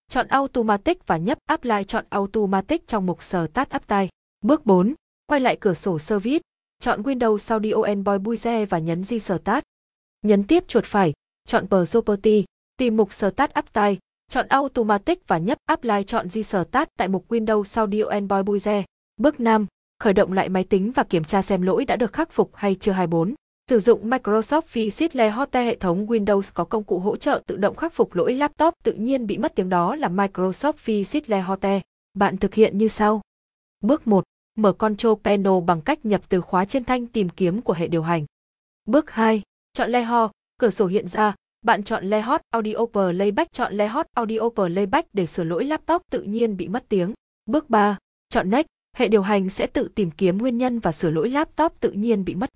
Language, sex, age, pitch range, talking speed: Vietnamese, female, 20-39, 195-245 Hz, 200 wpm